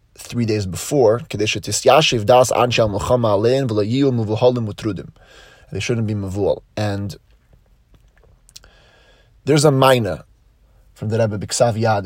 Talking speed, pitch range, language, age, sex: 80 wpm, 105-130 Hz, English, 20-39, male